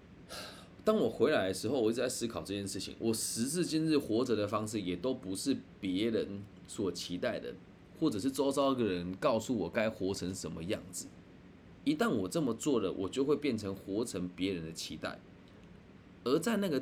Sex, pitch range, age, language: male, 95-140 Hz, 20-39, Chinese